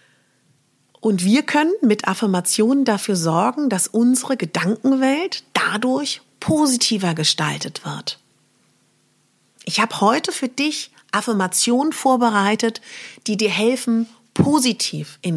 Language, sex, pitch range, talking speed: German, female, 175-240 Hz, 100 wpm